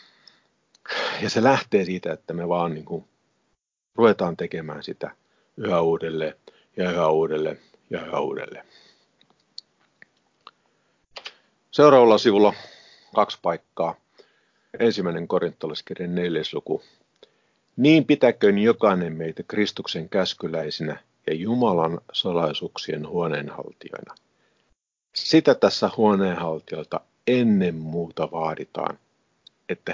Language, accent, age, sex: Finnish, native, 50-69, male